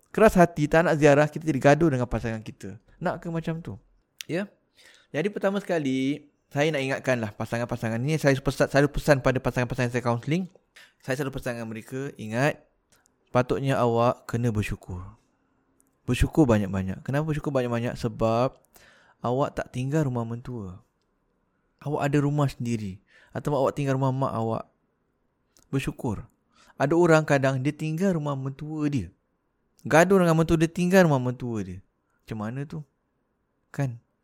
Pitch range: 115-150 Hz